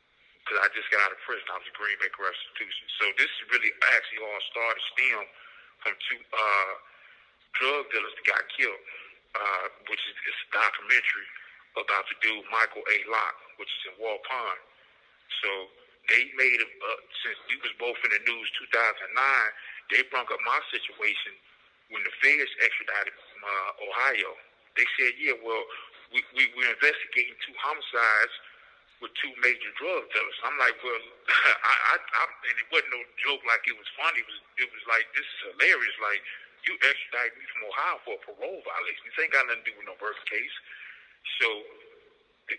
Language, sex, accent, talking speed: English, male, American, 180 wpm